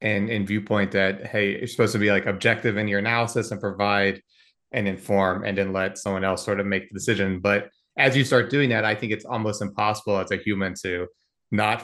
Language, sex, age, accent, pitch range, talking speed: English, male, 30-49, American, 100-115 Hz, 225 wpm